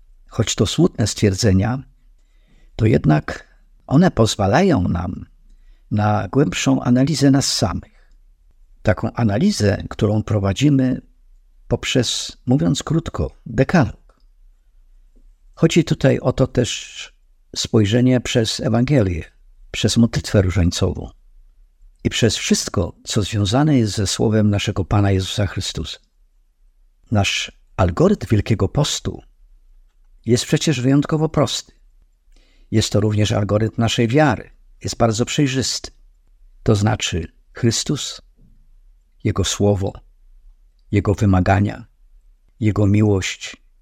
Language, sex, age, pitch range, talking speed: Polish, male, 50-69, 90-120 Hz, 95 wpm